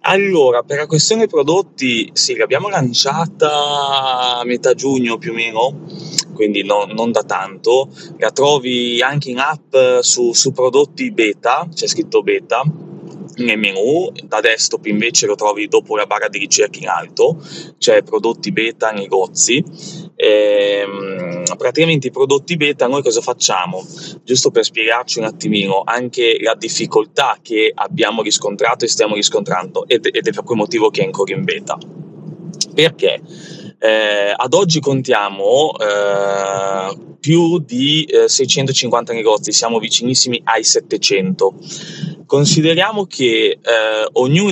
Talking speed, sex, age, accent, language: 135 wpm, male, 20-39, native, Italian